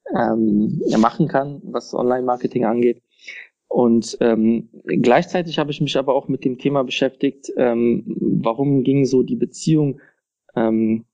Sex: male